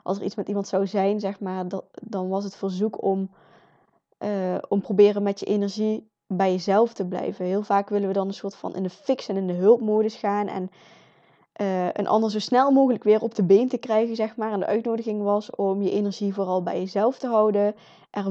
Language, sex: Dutch, female